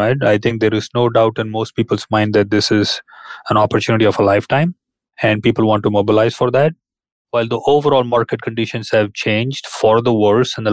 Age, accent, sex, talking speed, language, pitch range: 30-49, Indian, male, 205 wpm, English, 105-125 Hz